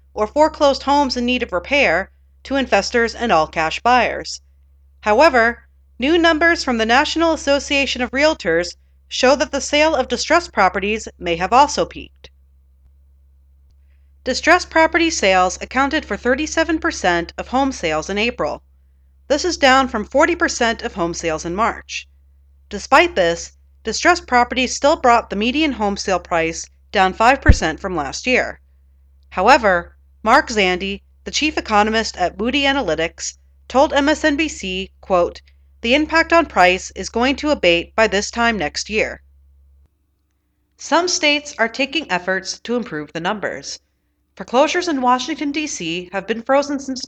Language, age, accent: English, 40-59, American